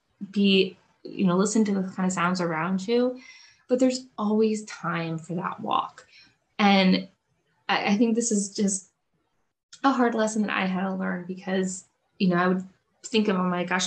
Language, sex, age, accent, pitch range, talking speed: English, female, 20-39, American, 180-225 Hz, 185 wpm